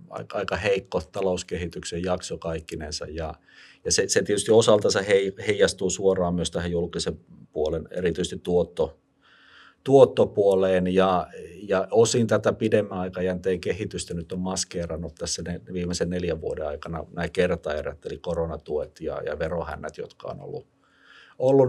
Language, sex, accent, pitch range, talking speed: Finnish, male, native, 85-110 Hz, 125 wpm